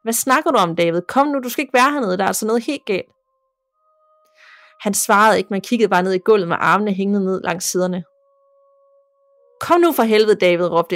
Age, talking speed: 30-49, 215 wpm